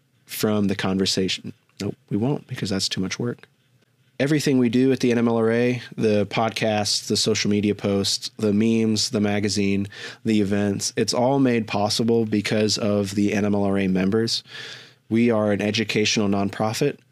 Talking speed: 155 wpm